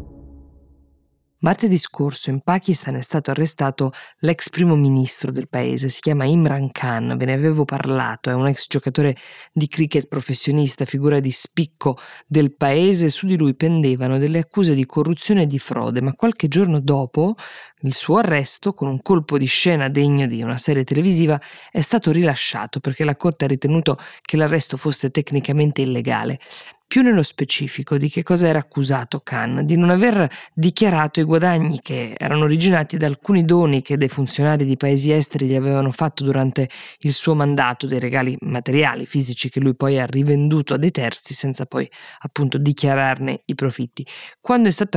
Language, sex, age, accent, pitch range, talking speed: Italian, female, 20-39, native, 135-160 Hz, 170 wpm